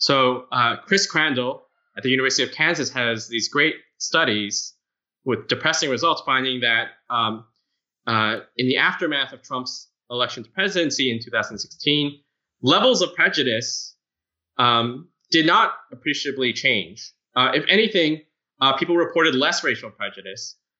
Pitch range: 120-160 Hz